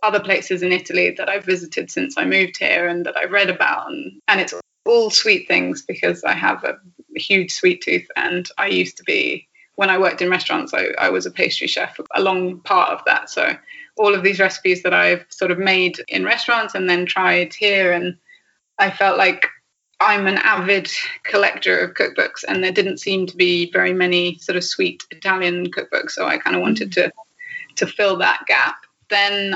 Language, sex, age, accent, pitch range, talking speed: English, female, 20-39, British, 180-300 Hz, 205 wpm